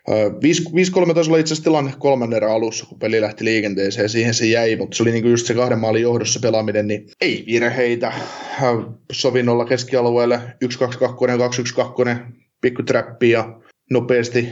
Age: 20-39